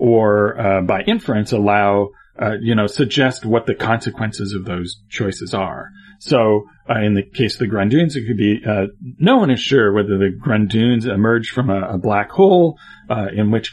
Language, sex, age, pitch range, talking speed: English, male, 40-59, 100-130 Hz, 190 wpm